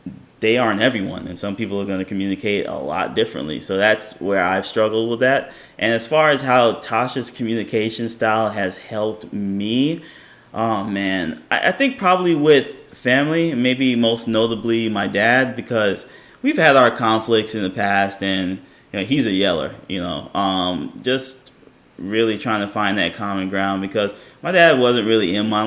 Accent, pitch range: American, 100-120 Hz